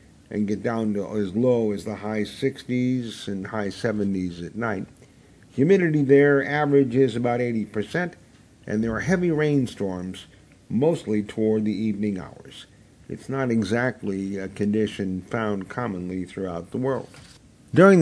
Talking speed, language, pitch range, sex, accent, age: 135 wpm, English, 105-130 Hz, male, American, 50-69